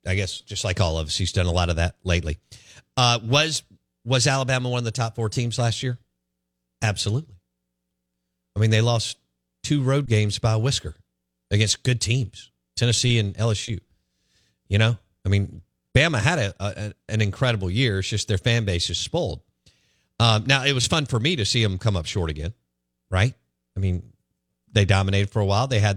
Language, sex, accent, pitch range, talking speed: English, male, American, 90-120 Hz, 195 wpm